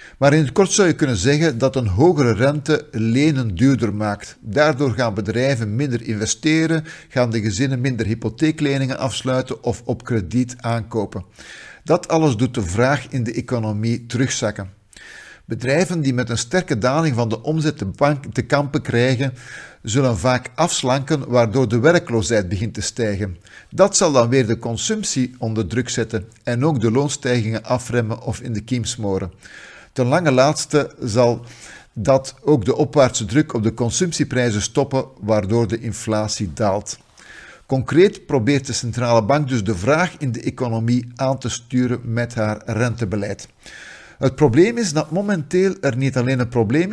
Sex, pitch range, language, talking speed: male, 115-145 Hz, Dutch, 155 wpm